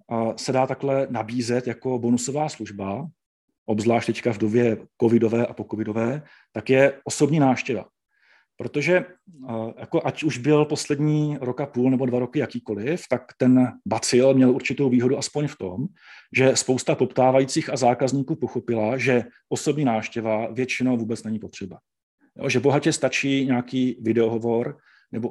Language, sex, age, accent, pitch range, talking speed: Czech, male, 40-59, native, 115-140 Hz, 140 wpm